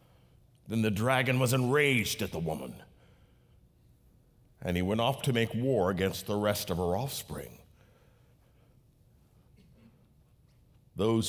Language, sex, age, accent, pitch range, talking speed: English, male, 50-69, American, 100-155 Hz, 115 wpm